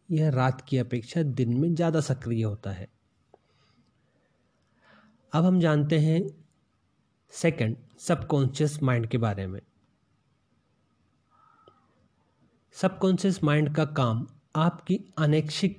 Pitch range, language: 125-155 Hz, Hindi